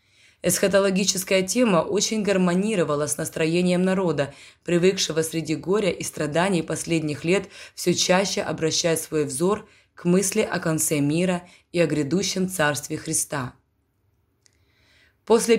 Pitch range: 140-185 Hz